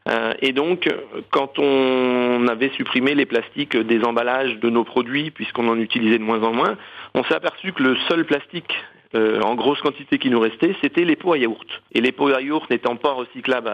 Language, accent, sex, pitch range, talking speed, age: French, French, male, 115-145 Hz, 205 wpm, 40-59